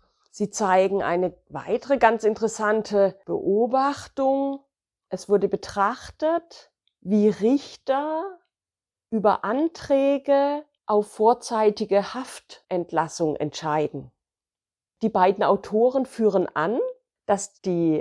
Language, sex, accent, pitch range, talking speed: German, female, German, 195-275 Hz, 85 wpm